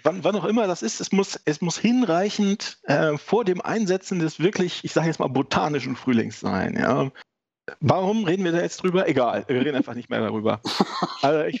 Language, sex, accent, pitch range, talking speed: German, male, German, 135-175 Hz, 190 wpm